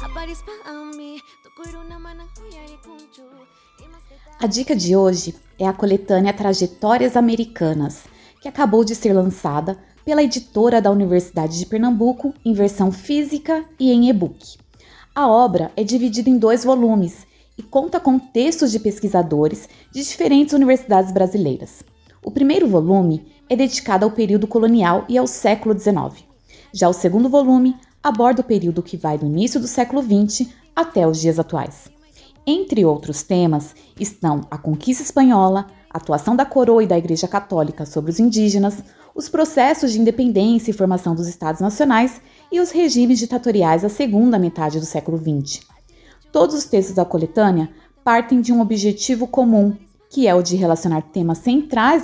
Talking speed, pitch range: 145 wpm, 185-265 Hz